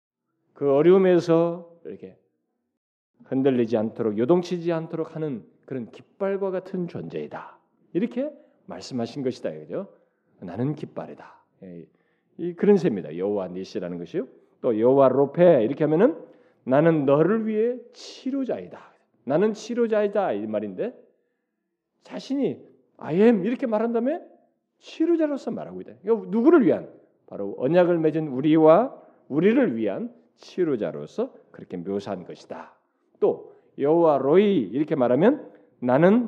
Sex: male